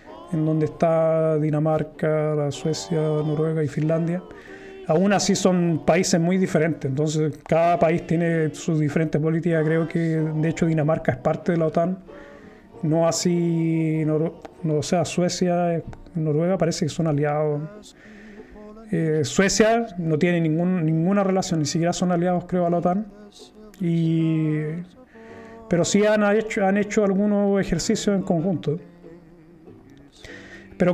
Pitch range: 155-180 Hz